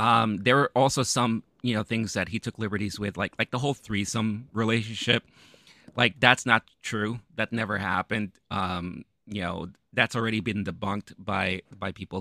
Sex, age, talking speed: male, 30-49, 175 wpm